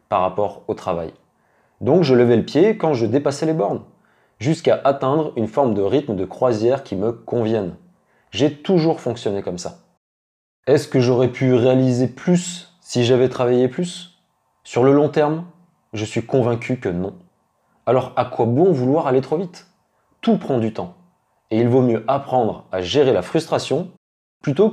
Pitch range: 110-155 Hz